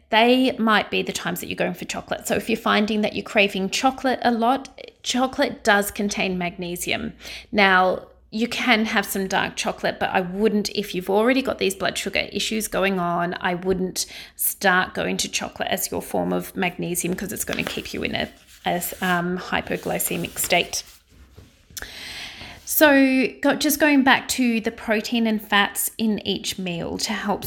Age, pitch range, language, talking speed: 30-49, 190-235 Hz, English, 175 wpm